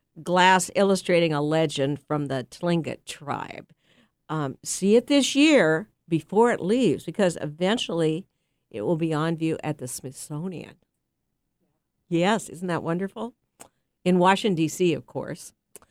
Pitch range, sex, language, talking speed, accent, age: 155-195 Hz, female, English, 130 wpm, American, 50-69